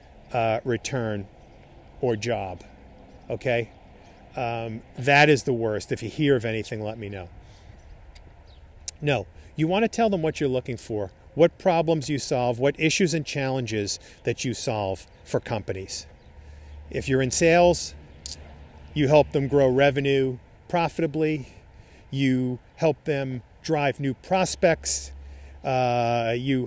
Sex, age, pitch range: male, 40-59, 90-150 Hz